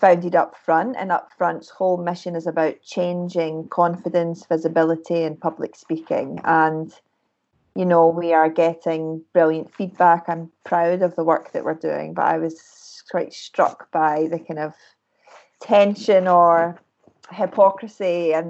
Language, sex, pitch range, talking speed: English, female, 165-190 Hz, 145 wpm